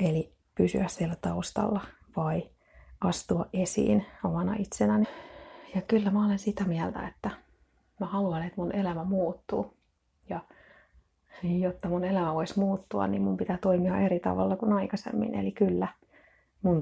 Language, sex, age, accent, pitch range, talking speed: Finnish, female, 30-49, native, 165-200 Hz, 140 wpm